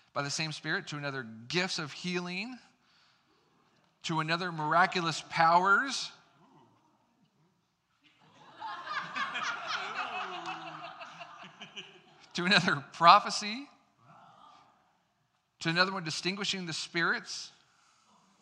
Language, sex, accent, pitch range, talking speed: English, male, American, 135-175 Hz, 70 wpm